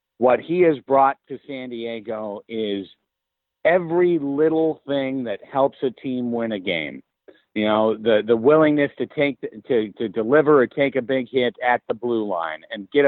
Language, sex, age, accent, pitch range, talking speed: English, male, 50-69, American, 115-155 Hz, 175 wpm